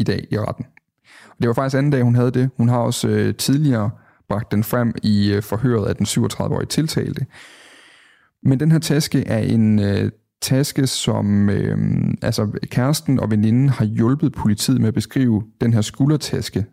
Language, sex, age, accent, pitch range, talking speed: Danish, male, 30-49, native, 110-135 Hz, 180 wpm